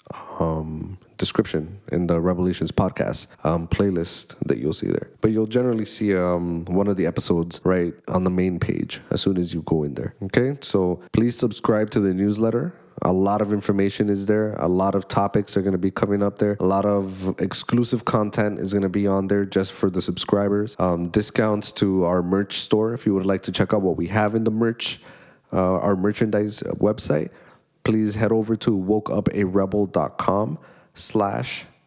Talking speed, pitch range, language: 190 wpm, 90-110 Hz, English